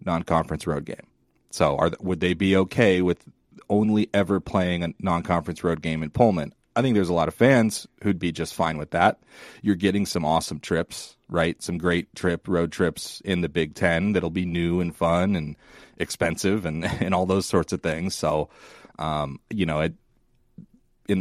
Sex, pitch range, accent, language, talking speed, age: male, 85-100 Hz, American, English, 190 wpm, 30-49